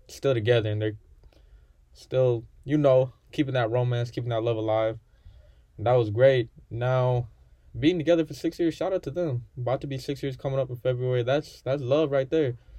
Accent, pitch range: American, 110-130 Hz